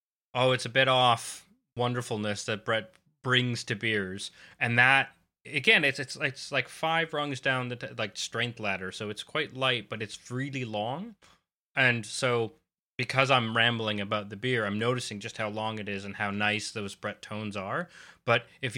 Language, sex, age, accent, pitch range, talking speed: English, male, 20-39, American, 105-130 Hz, 185 wpm